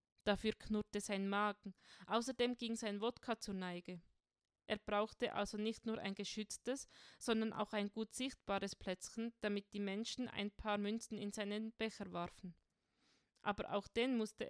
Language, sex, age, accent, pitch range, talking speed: German, female, 20-39, Austrian, 200-230 Hz, 155 wpm